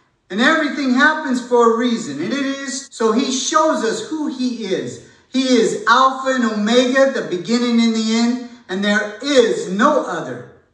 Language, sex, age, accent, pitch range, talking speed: English, male, 50-69, American, 220-270 Hz, 175 wpm